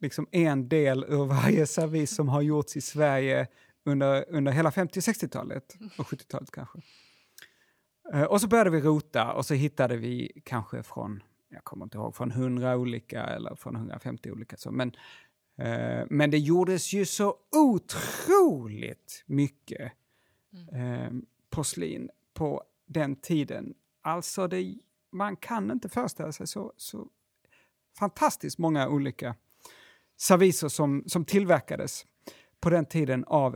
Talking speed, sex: 140 wpm, male